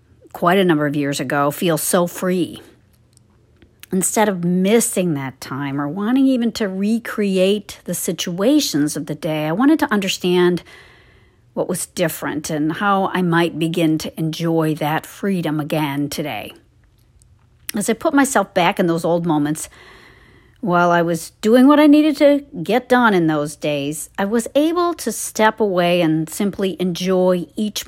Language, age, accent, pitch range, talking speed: English, 50-69, American, 160-220 Hz, 160 wpm